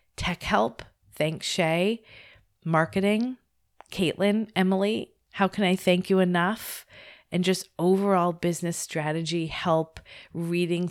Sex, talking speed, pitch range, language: female, 110 wpm, 145-175 Hz, English